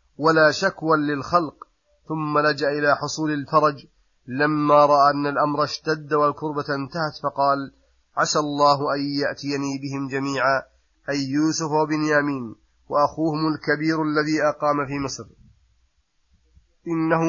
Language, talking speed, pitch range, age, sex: Arabic, 115 wpm, 145-160 Hz, 30-49, male